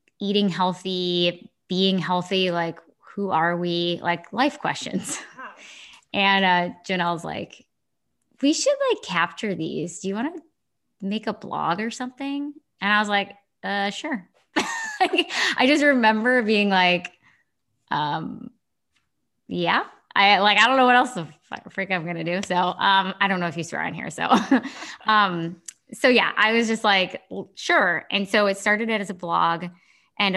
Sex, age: female, 20-39